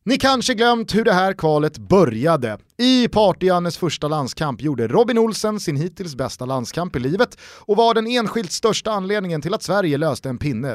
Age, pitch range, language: 30-49, 135-210 Hz, Swedish